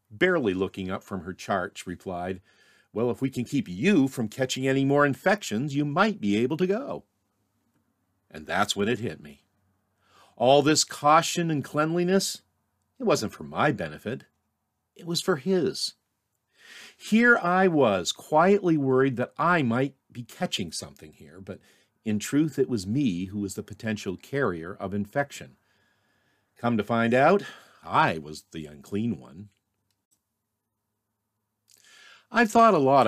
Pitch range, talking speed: 100-145 Hz, 150 wpm